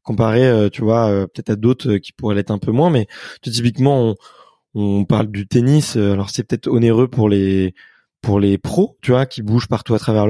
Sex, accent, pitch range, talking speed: male, French, 105-130 Hz, 210 wpm